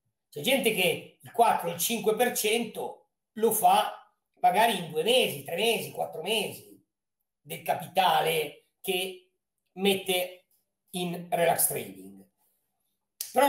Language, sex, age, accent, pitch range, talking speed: Italian, male, 50-69, native, 180-255 Hz, 110 wpm